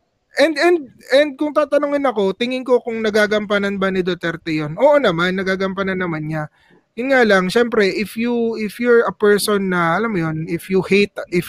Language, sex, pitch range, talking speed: English, male, 195-275 Hz, 190 wpm